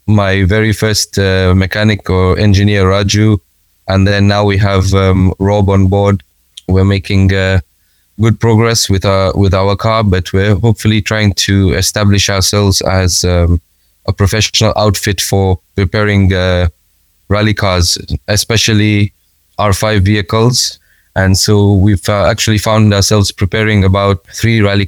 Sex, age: male, 20-39